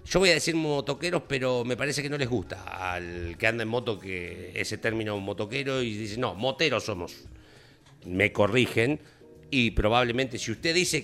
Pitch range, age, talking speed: 95-130 Hz, 50-69, 180 wpm